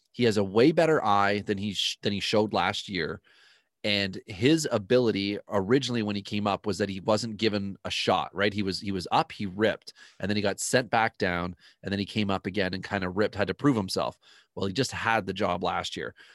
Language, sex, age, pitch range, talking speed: English, male, 30-49, 100-115 Hz, 240 wpm